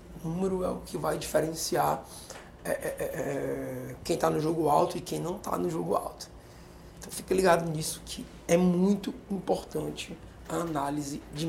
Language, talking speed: Portuguese, 165 wpm